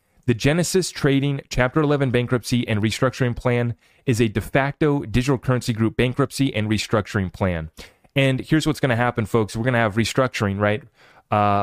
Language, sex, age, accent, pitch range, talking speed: English, male, 30-49, American, 105-125 Hz, 175 wpm